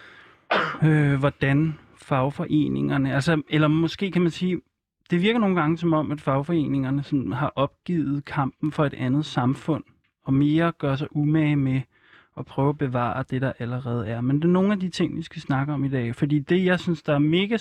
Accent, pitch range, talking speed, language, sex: native, 135-155 Hz, 195 wpm, Danish, male